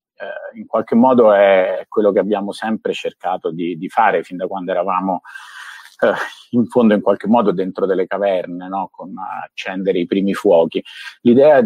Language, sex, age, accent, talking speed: Italian, male, 50-69, native, 175 wpm